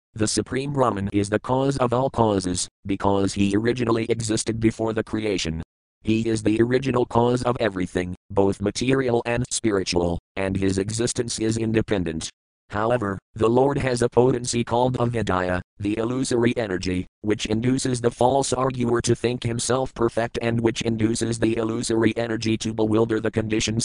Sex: male